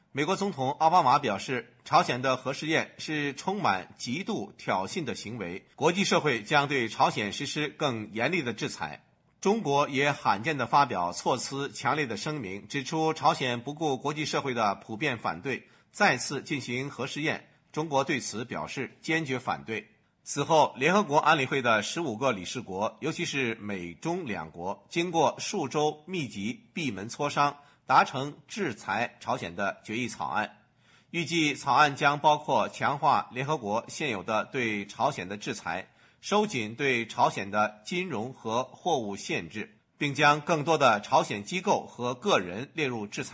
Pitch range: 120-160 Hz